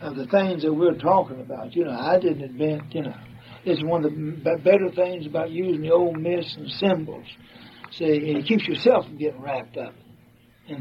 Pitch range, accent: 120-185 Hz, American